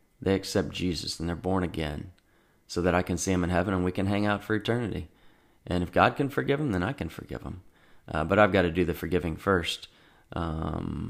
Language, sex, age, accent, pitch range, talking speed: English, male, 30-49, American, 85-100 Hz, 230 wpm